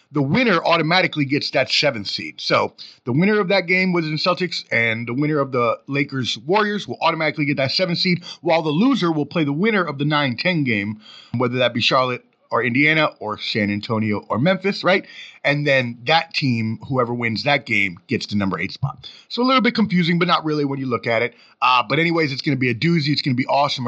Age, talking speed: 30-49, 230 wpm